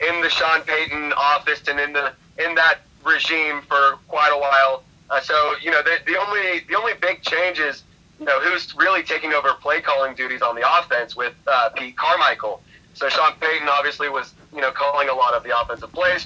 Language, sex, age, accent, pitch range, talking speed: English, male, 30-49, American, 145-175 Hz, 205 wpm